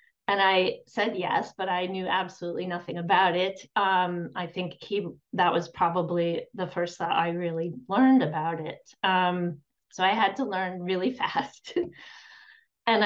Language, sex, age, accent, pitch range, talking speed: English, female, 30-49, American, 170-195 Hz, 155 wpm